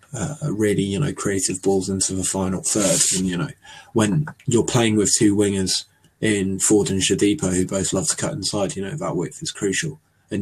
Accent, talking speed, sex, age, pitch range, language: British, 205 wpm, male, 20-39, 95-145 Hz, English